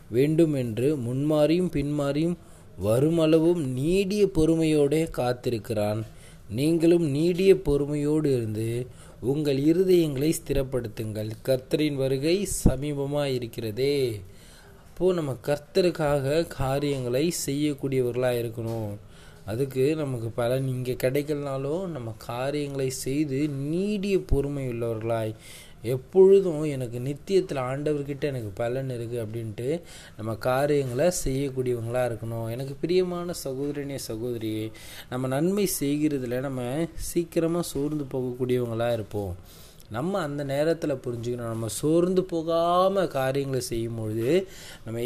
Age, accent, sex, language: 20-39, native, male, Tamil